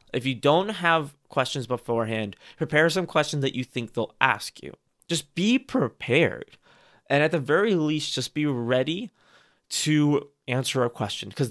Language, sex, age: English, male, 20-39